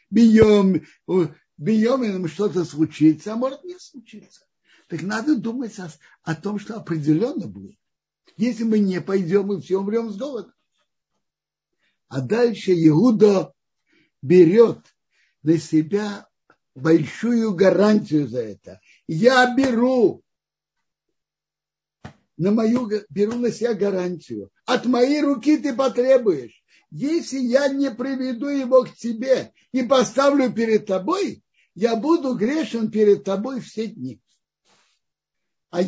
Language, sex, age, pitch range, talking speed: Russian, male, 60-79, 165-245 Hz, 110 wpm